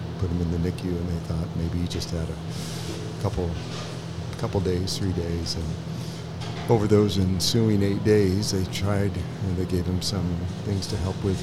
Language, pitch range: English, 85-95 Hz